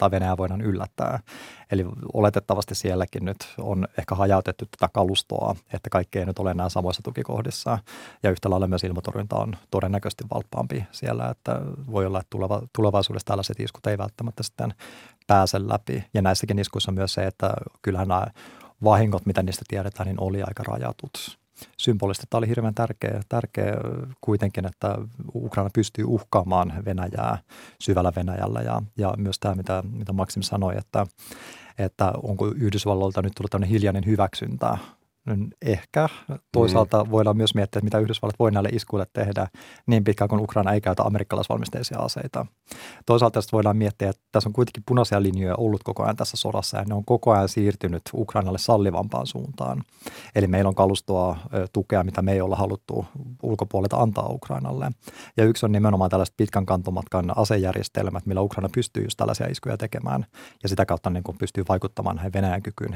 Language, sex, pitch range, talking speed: Finnish, male, 95-110 Hz, 160 wpm